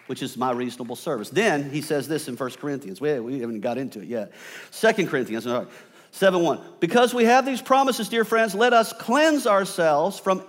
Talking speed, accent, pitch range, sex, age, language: 195 wpm, American, 155-220 Hz, male, 50-69, English